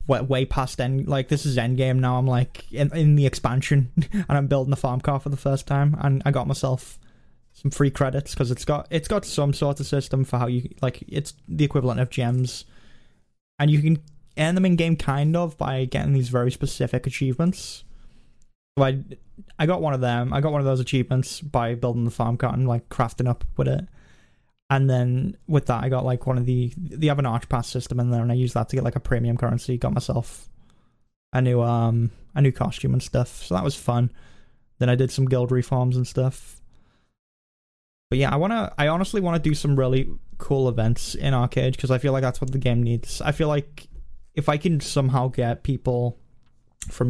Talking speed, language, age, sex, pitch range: 215 wpm, English, 10-29, male, 125-145 Hz